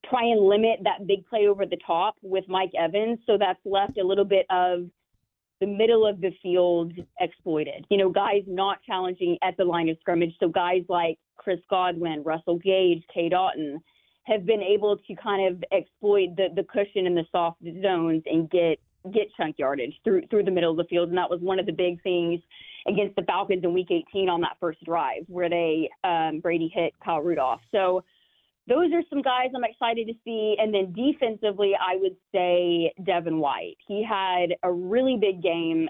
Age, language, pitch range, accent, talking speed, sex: 30-49, English, 175-205 Hz, American, 195 wpm, female